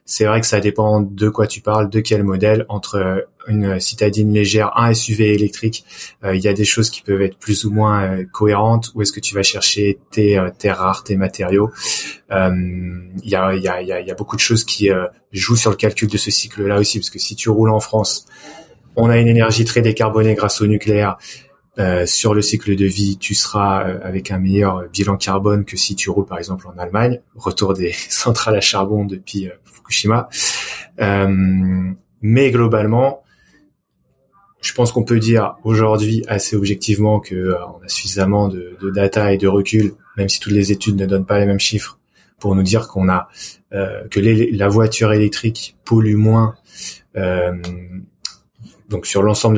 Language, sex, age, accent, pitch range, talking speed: French, male, 20-39, French, 95-110 Hz, 190 wpm